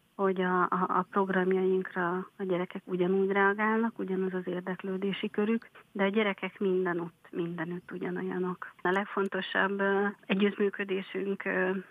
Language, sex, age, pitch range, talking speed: Hungarian, female, 30-49, 180-195 Hz, 115 wpm